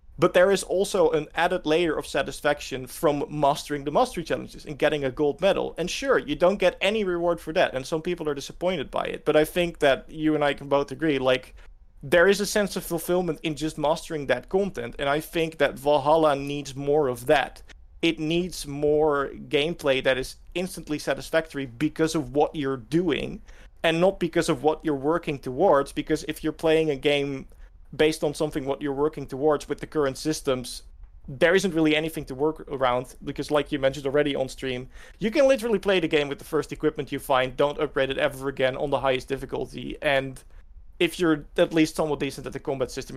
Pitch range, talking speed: 135-160 Hz, 210 wpm